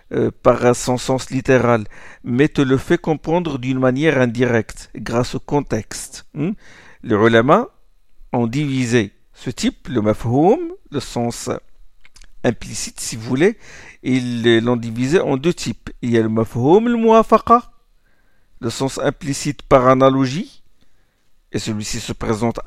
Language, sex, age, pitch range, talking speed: French, male, 50-69, 120-160 Hz, 145 wpm